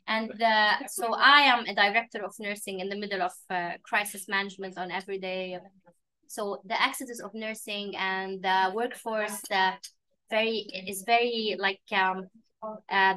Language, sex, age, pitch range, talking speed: English, female, 20-39, 190-220 Hz, 160 wpm